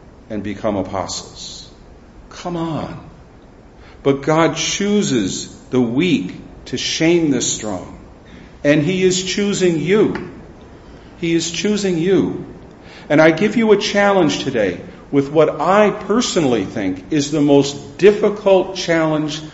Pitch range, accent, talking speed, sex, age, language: 110-170 Hz, American, 125 wpm, male, 50-69, English